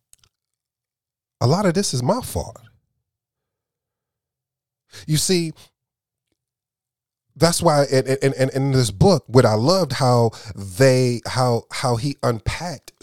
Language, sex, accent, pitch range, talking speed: English, male, American, 100-125 Hz, 115 wpm